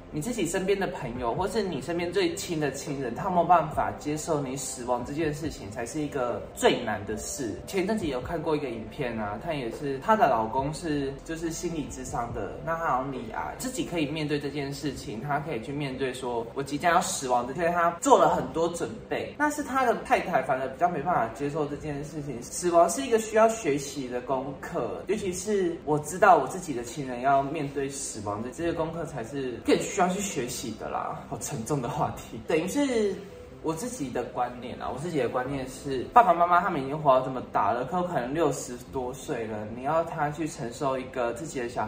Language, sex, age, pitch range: Chinese, male, 20-39, 130-175 Hz